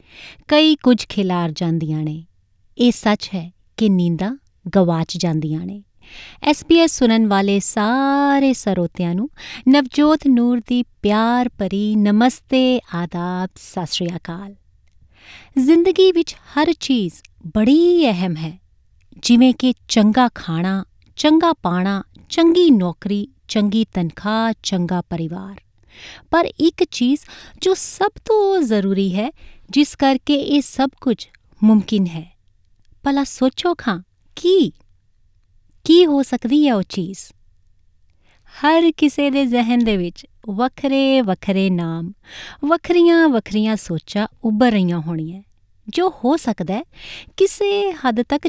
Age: 30-49